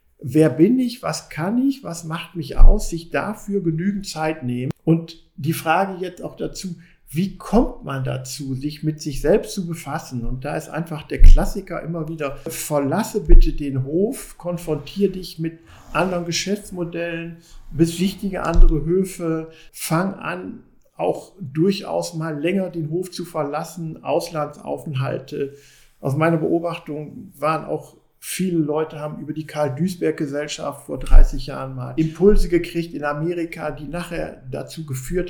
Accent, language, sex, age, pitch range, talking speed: German, German, male, 50-69, 140-175 Hz, 145 wpm